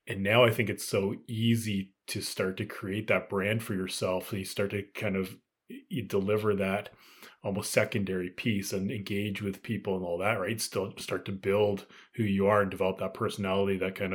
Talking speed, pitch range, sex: 205 wpm, 95-105 Hz, male